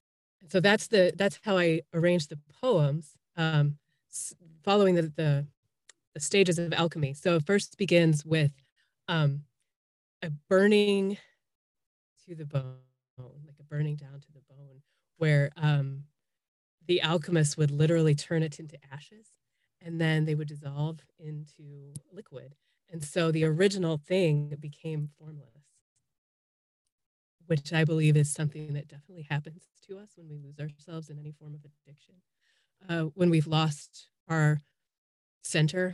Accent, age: American, 30-49